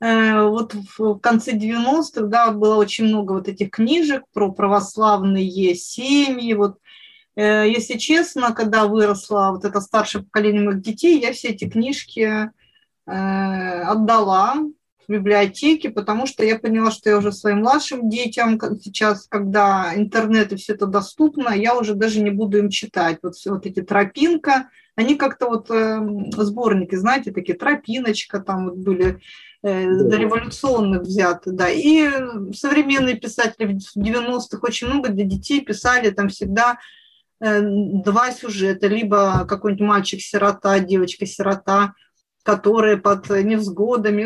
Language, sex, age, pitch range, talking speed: Russian, female, 30-49, 200-240 Hz, 130 wpm